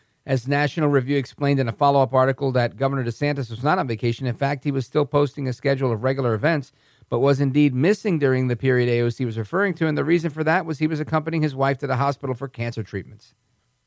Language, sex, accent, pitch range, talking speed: English, male, American, 130-180 Hz, 235 wpm